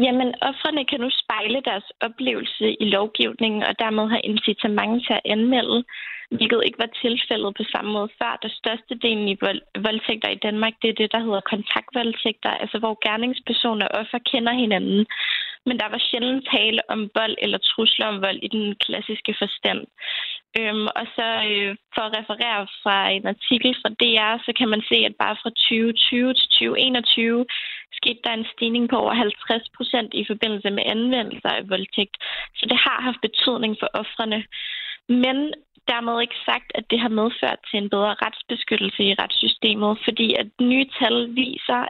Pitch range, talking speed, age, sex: 215-245 Hz, 170 wpm, 20-39, female